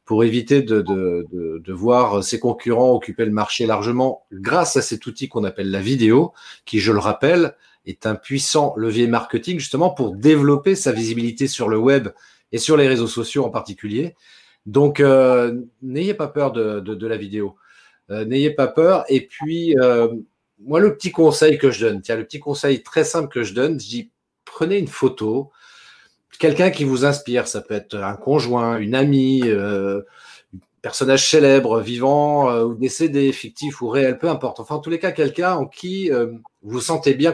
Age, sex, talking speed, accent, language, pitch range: 40-59, male, 190 wpm, French, French, 115-150 Hz